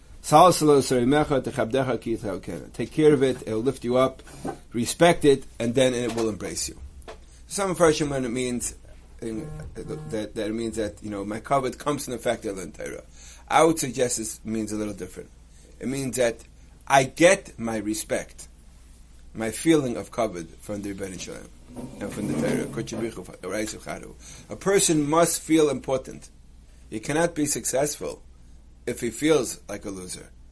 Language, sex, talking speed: English, male, 150 wpm